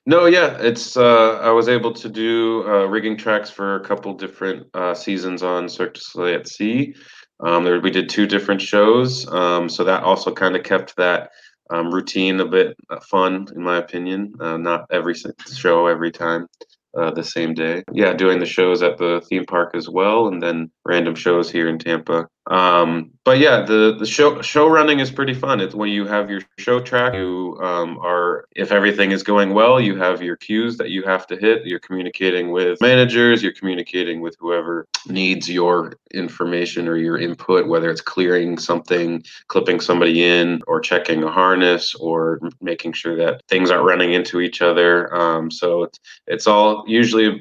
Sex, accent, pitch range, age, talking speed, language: male, American, 85-105 Hz, 20-39, 190 wpm, Spanish